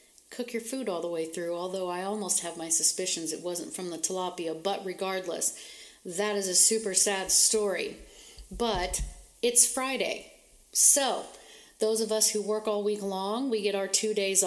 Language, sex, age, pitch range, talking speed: English, female, 40-59, 190-225 Hz, 180 wpm